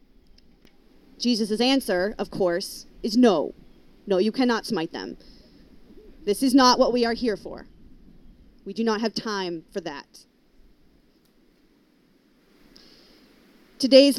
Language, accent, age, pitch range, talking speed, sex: English, American, 30-49, 205-255 Hz, 115 wpm, female